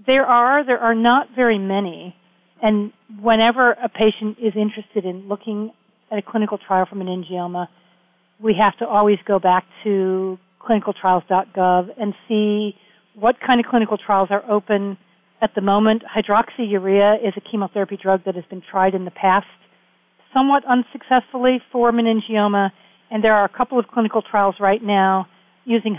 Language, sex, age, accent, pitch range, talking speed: English, female, 50-69, American, 195-225 Hz, 155 wpm